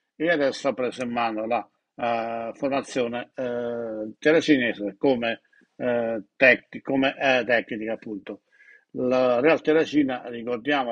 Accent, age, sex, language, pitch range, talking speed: native, 60-79, male, Italian, 115-135 Hz, 120 wpm